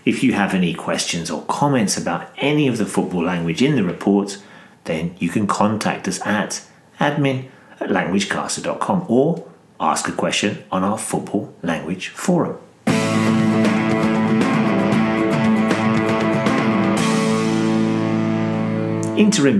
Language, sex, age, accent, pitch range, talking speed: English, male, 40-59, British, 100-120 Hz, 105 wpm